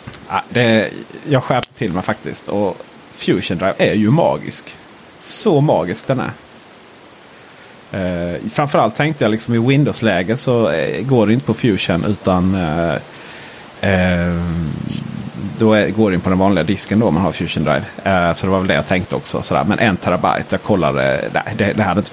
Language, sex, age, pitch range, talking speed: Swedish, male, 30-49, 100-135 Hz, 185 wpm